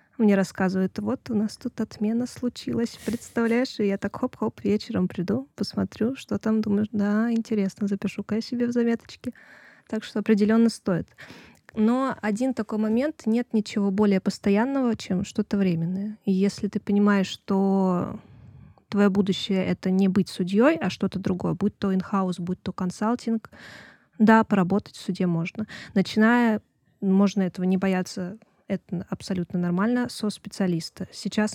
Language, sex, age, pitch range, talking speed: Russian, female, 20-39, 190-225 Hz, 150 wpm